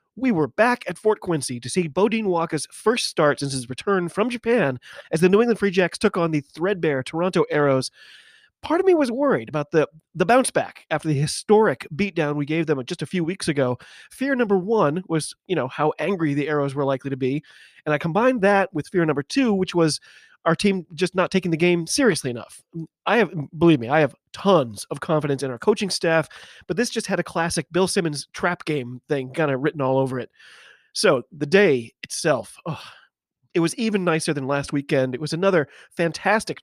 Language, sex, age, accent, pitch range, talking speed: English, male, 30-49, American, 150-210 Hz, 215 wpm